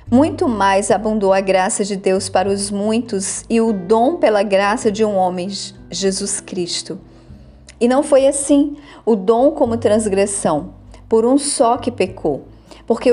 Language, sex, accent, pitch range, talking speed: Portuguese, female, Brazilian, 200-245 Hz, 155 wpm